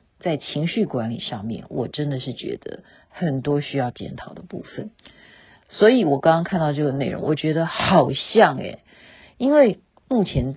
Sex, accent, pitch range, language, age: female, native, 155-230 Hz, Chinese, 50-69